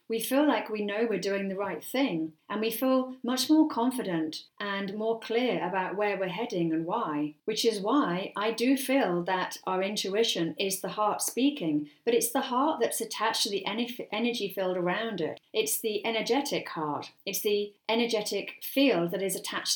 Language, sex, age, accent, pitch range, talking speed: English, female, 40-59, British, 175-235 Hz, 185 wpm